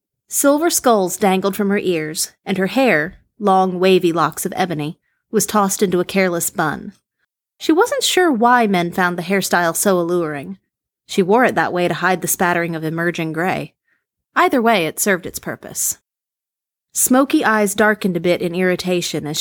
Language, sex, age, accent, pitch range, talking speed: English, female, 30-49, American, 175-220 Hz, 175 wpm